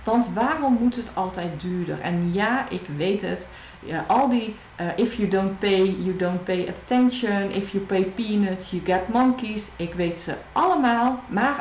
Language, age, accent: Dutch, 40-59, Dutch